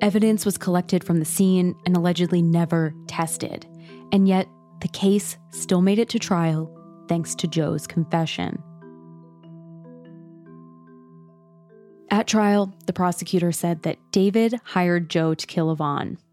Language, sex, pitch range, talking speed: English, female, 155-185 Hz, 130 wpm